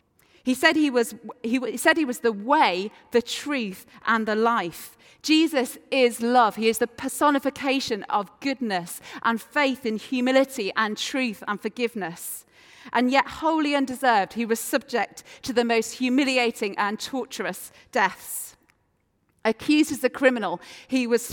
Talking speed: 145 wpm